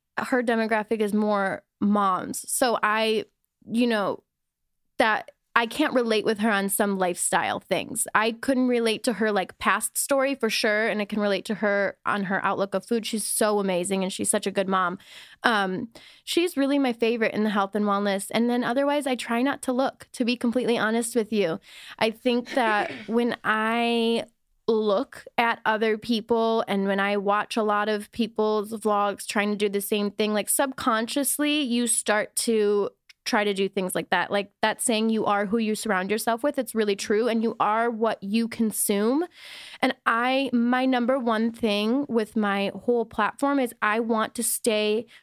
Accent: American